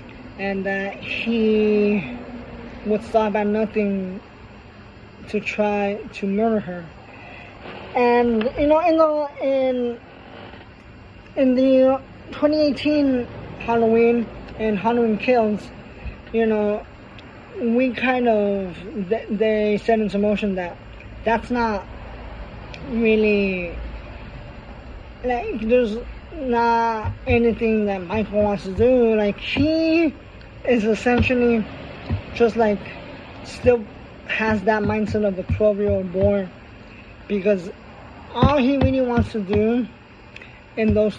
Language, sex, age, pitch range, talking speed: English, male, 20-39, 185-230 Hz, 105 wpm